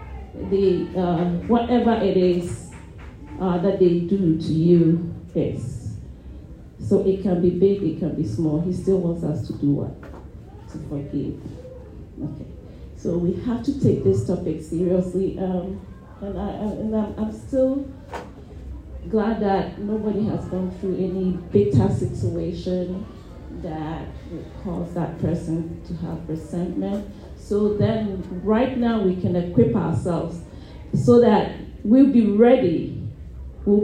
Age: 40-59